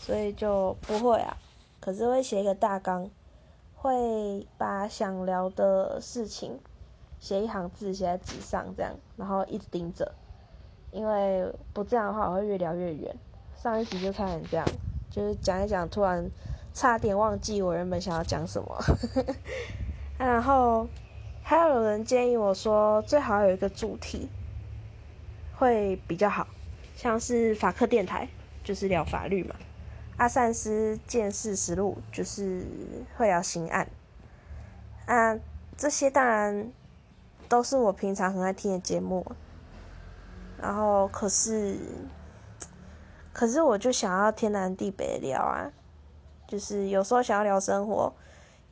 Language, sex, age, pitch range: Chinese, female, 20-39, 165-225 Hz